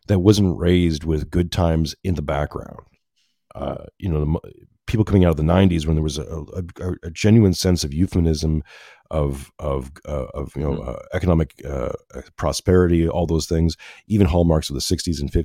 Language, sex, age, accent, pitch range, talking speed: English, male, 40-59, American, 80-100 Hz, 185 wpm